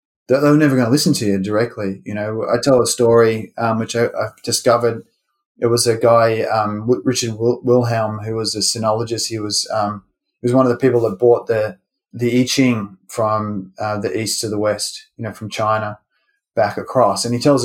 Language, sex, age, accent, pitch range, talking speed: English, male, 20-39, Australian, 105-130 Hz, 210 wpm